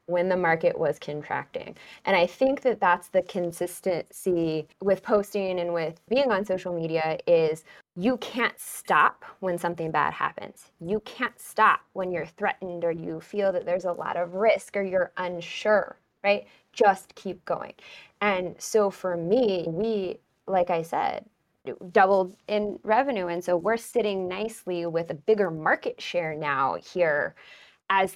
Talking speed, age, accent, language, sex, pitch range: 160 wpm, 20-39, American, English, female, 170-205 Hz